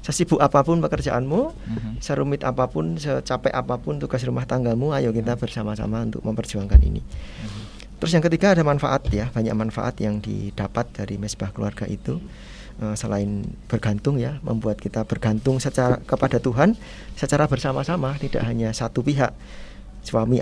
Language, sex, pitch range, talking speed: Indonesian, male, 110-140 Hz, 135 wpm